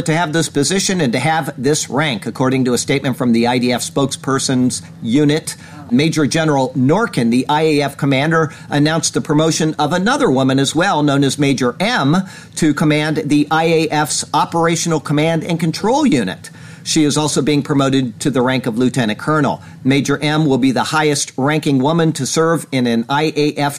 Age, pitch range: 50-69, 135-165 Hz